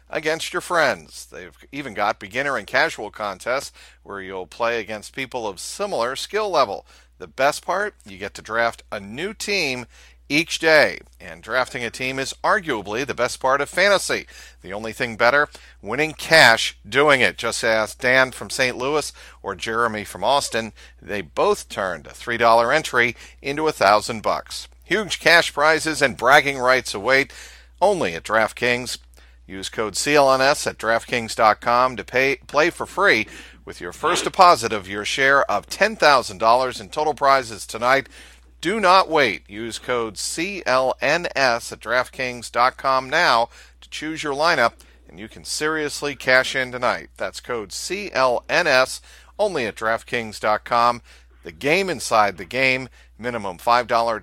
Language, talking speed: English, 150 wpm